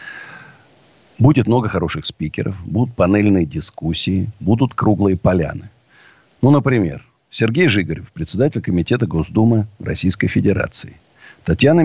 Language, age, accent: Russian, 50-69, native